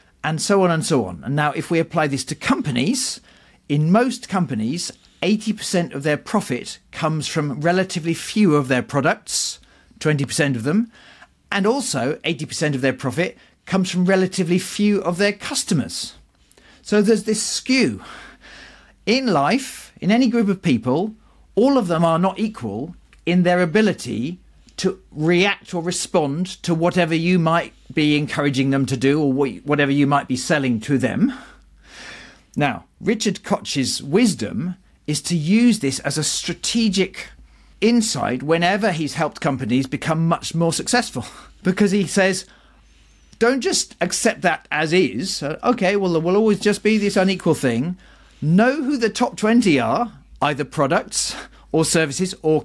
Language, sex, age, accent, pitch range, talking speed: English, male, 40-59, British, 150-210 Hz, 155 wpm